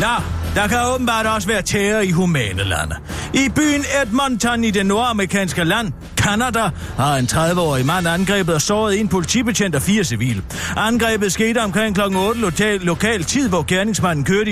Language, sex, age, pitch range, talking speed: Danish, male, 40-59, 150-220 Hz, 175 wpm